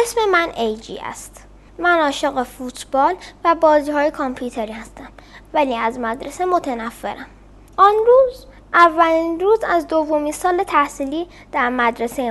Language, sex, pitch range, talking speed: Persian, female, 235-325 Hz, 125 wpm